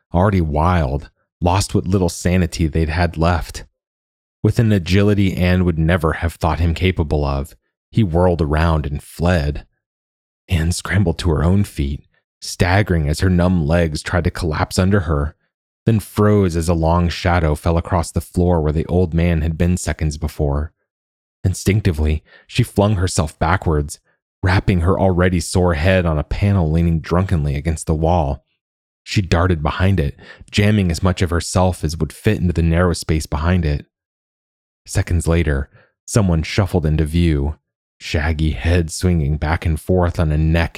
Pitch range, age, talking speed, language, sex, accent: 75-90 Hz, 30-49, 160 wpm, English, male, American